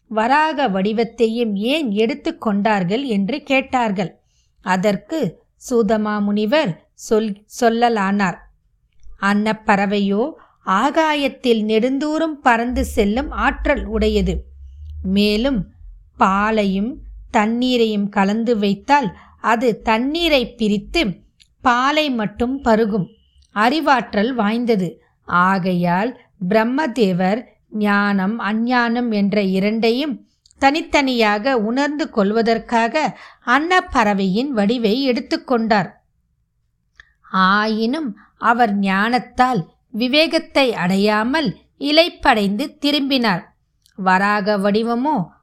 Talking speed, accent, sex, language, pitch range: 70 wpm, native, female, Tamil, 205-265 Hz